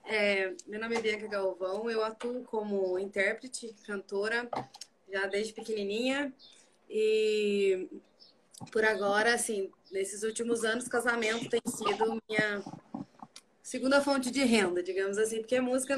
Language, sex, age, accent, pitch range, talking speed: Portuguese, female, 20-39, Brazilian, 200-260 Hz, 125 wpm